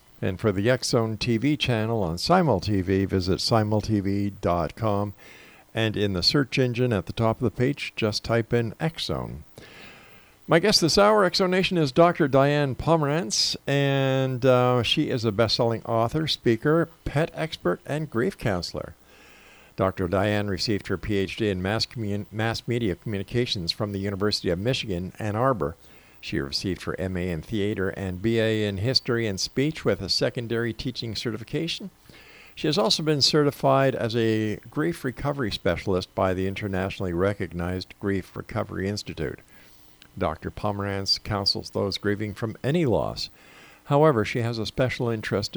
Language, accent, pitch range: English, American, 95-130 Hz